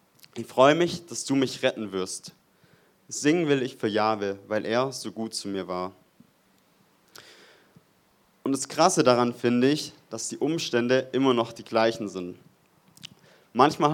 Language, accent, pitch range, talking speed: German, German, 115-140 Hz, 150 wpm